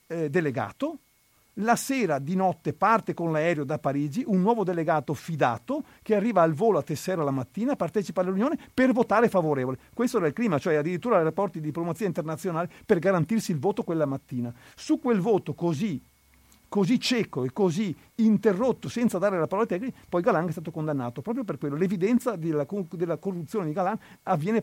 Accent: native